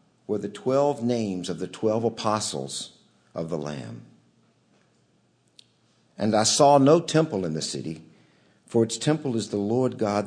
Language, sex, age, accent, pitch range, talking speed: English, male, 50-69, American, 95-140 Hz, 150 wpm